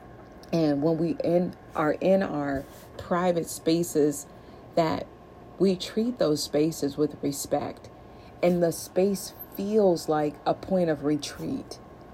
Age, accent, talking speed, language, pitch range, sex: 40-59, American, 120 wpm, English, 150-180 Hz, female